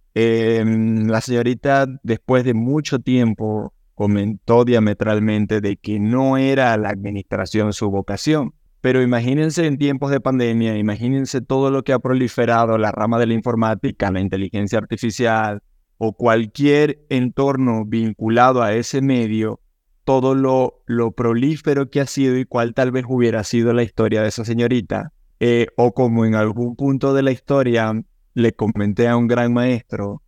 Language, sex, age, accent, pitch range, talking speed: Spanish, male, 20-39, Mexican, 110-135 Hz, 155 wpm